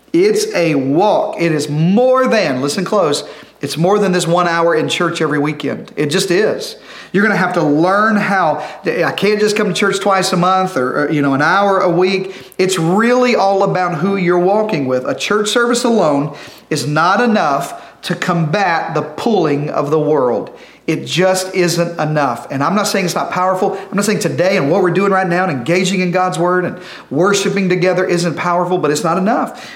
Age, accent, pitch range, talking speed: 40-59, American, 165-200 Hz, 205 wpm